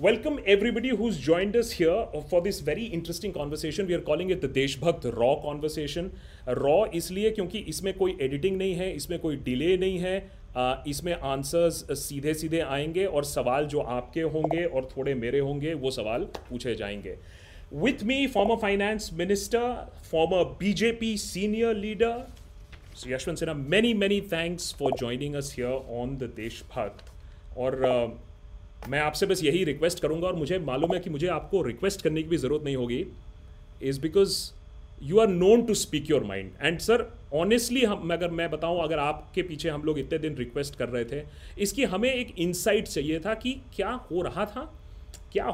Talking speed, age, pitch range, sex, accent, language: 180 wpm, 30-49, 135-200 Hz, male, native, Hindi